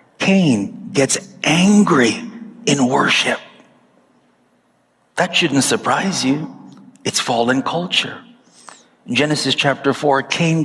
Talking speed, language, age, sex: 90 wpm, English, 50-69, male